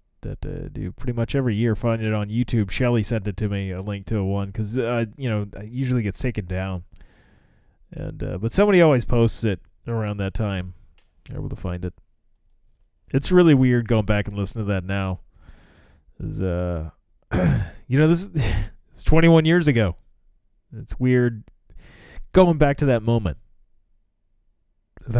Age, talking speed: 30-49, 175 wpm